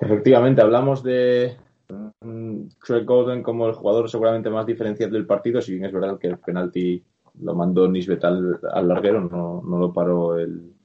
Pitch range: 100-120 Hz